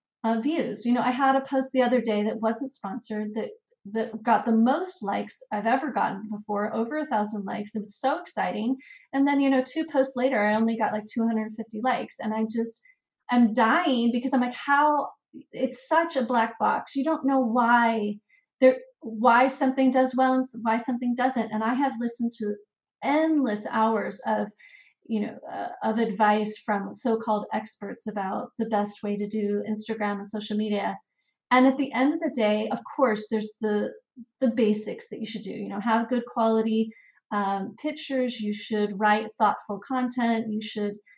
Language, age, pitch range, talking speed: Hindi, 30-49, 215-265 Hz, 190 wpm